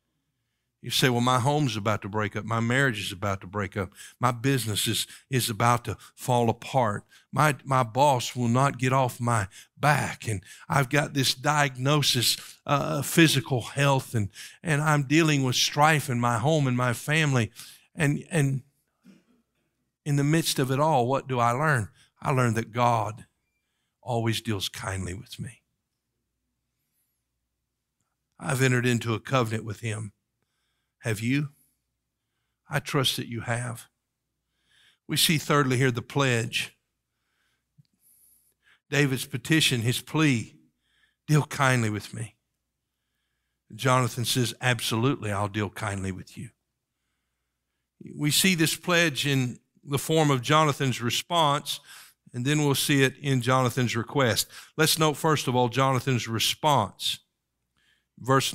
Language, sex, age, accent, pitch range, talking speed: English, male, 60-79, American, 115-145 Hz, 140 wpm